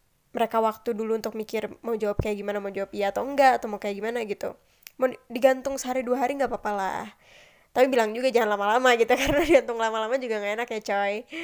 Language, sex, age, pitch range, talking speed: Indonesian, female, 20-39, 215-255 Hz, 220 wpm